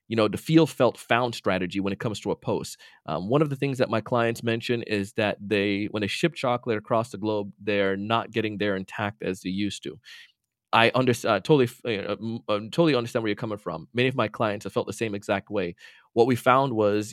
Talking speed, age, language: 230 wpm, 30-49, English